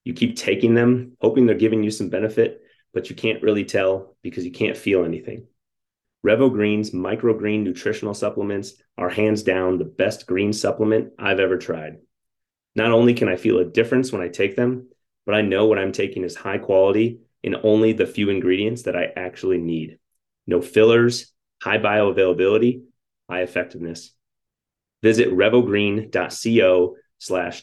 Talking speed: 160 wpm